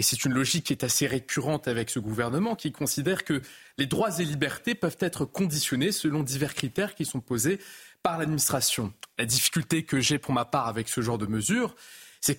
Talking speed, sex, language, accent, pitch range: 200 wpm, male, French, French, 130-170 Hz